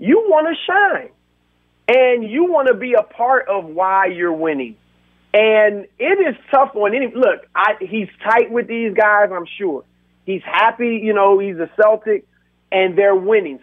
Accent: American